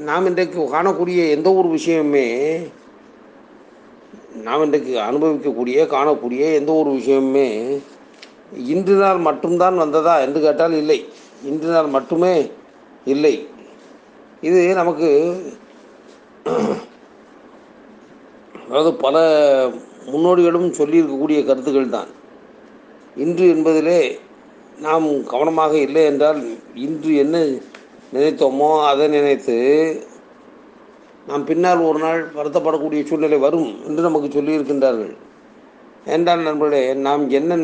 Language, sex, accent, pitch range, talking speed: Tamil, male, native, 140-165 Hz, 90 wpm